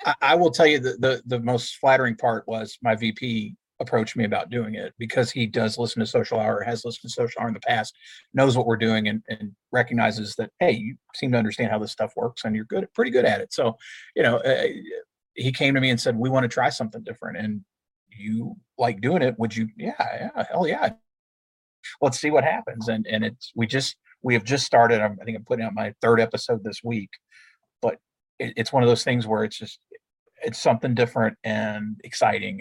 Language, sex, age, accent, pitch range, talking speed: English, male, 40-59, American, 110-135 Hz, 225 wpm